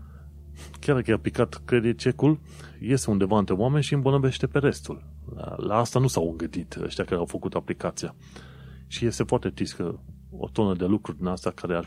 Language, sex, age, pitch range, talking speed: Romanian, male, 30-49, 80-110 Hz, 185 wpm